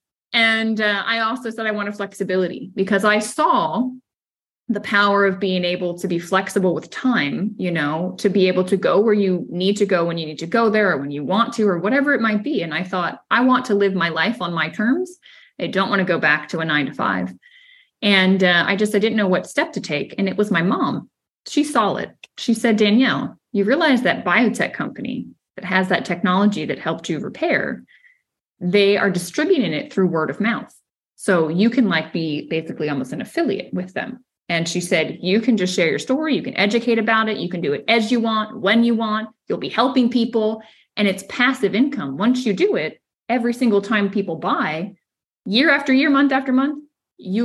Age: 20-39